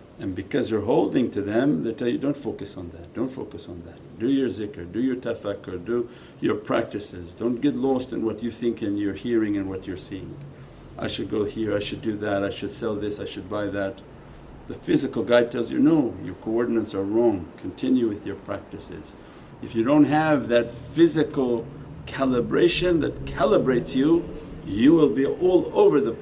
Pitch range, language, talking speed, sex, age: 95-120 Hz, English, 195 wpm, male, 50-69